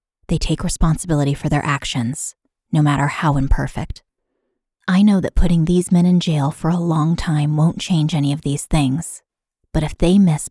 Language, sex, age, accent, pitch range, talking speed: English, female, 20-39, American, 145-170 Hz, 185 wpm